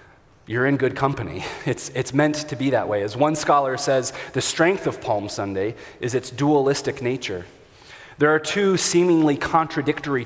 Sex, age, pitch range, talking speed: male, 30-49, 125-155 Hz, 170 wpm